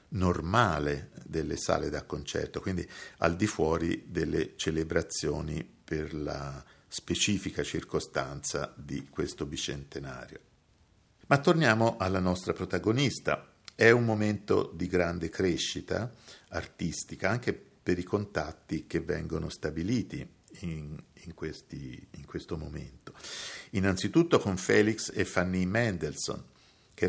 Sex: male